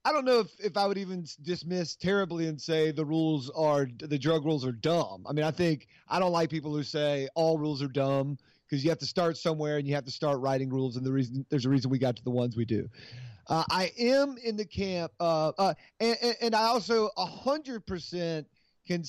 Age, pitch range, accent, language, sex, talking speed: 30-49, 145-190 Hz, American, English, male, 235 wpm